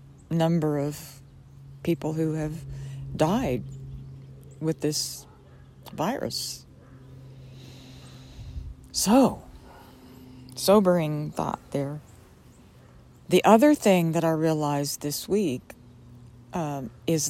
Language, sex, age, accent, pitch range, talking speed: English, female, 60-79, American, 105-165 Hz, 80 wpm